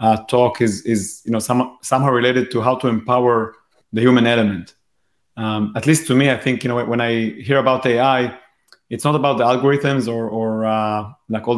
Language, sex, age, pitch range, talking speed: English, male, 30-49, 110-130 Hz, 205 wpm